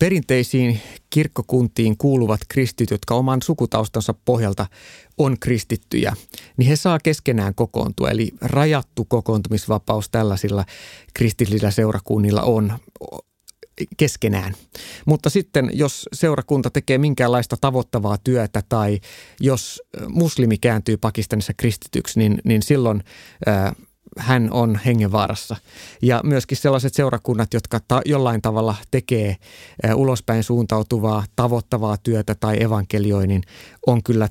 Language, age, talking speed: Finnish, 30-49, 110 wpm